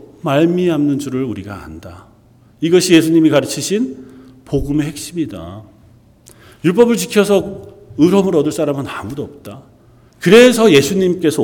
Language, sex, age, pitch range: Korean, male, 40-59, 115-170 Hz